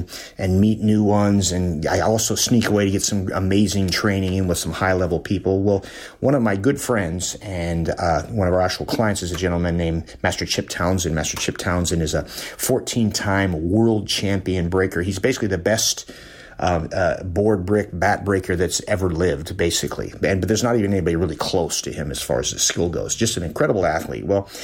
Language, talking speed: English, 205 wpm